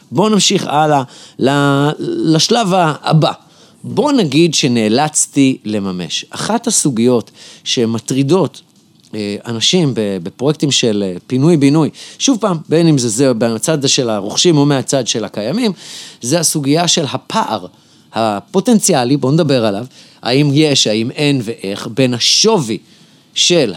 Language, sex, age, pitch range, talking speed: Hebrew, male, 30-49, 115-165 Hz, 115 wpm